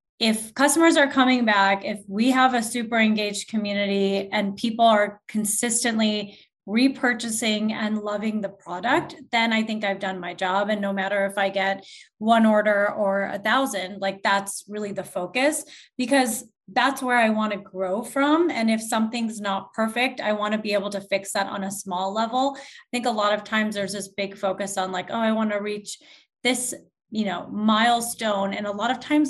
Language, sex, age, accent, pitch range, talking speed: English, female, 20-39, American, 195-235 Hz, 195 wpm